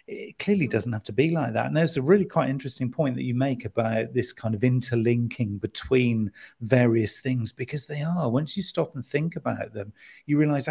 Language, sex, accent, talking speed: English, male, British, 215 wpm